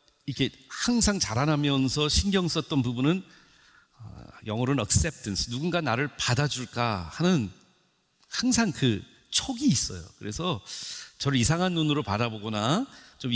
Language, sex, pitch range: Korean, male, 120-190 Hz